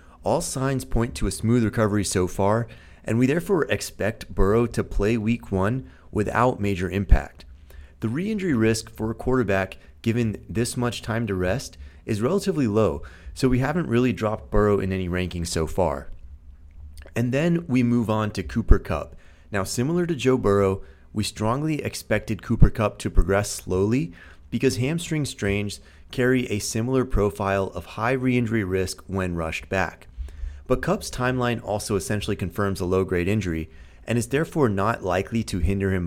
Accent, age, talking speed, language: American, 30-49, 165 wpm, English